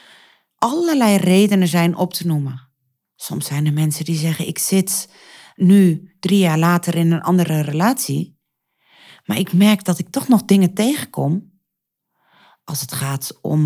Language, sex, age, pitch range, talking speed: Dutch, female, 40-59, 150-190 Hz, 155 wpm